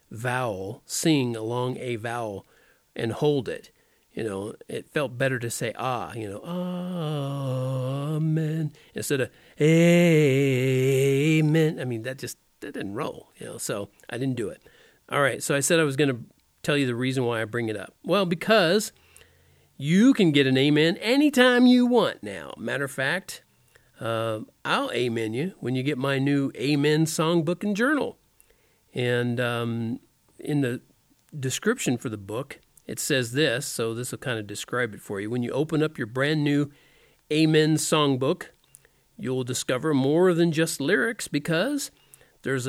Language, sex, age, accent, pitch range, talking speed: English, male, 40-59, American, 125-165 Hz, 165 wpm